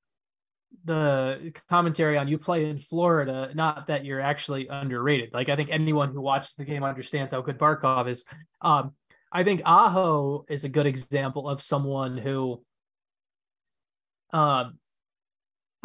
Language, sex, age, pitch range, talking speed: English, male, 20-39, 140-160 Hz, 140 wpm